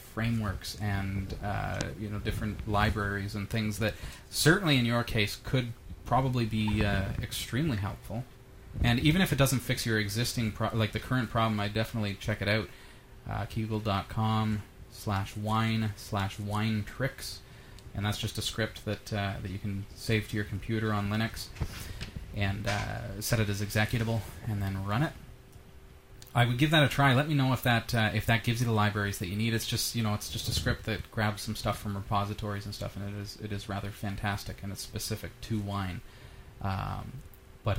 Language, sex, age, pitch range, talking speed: English, male, 30-49, 100-115 Hz, 195 wpm